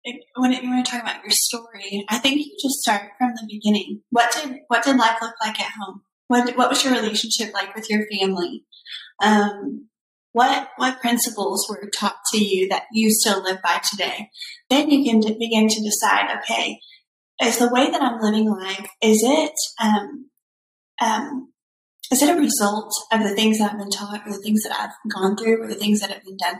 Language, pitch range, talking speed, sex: English, 200-245 Hz, 205 wpm, female